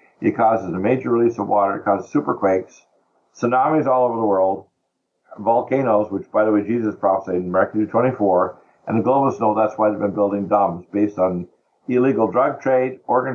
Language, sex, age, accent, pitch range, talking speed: English, male, 60-79, American, 100-115 Hz, 185 wpm